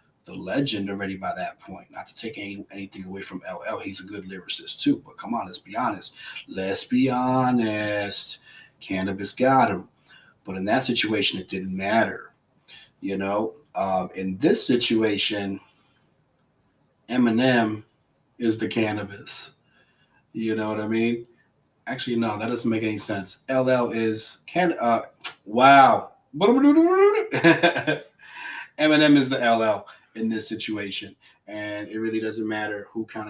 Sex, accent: male, American